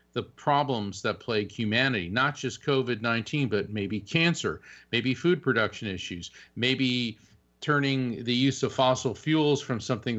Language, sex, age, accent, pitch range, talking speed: English, male, 40-59, American, 110-135 Hz, 140 wpm